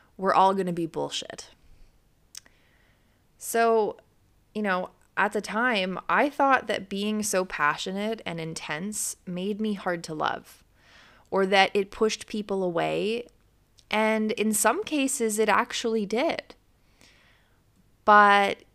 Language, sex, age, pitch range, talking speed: English, female, 20-39, 175-225 Hz, 125 wpm